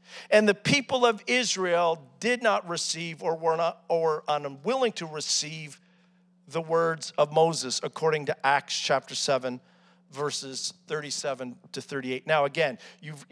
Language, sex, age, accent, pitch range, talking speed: English, male, 50-69, American, 165-200 Hz, 140 wpm